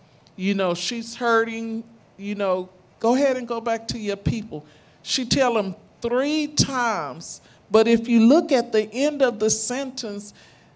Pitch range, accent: 200-250 Hz, American